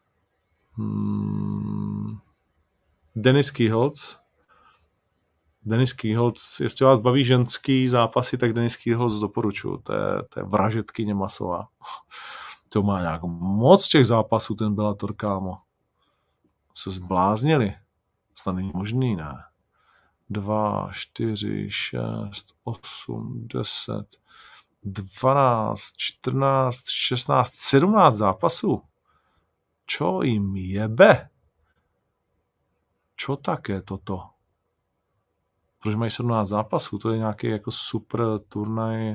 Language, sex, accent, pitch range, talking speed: Czech, male, native, 100-120 Hz, 95 wpm